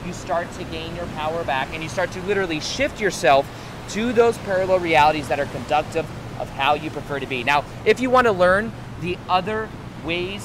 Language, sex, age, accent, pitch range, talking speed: English, male, 30-49, American, 140-180 Hz, 200 wpm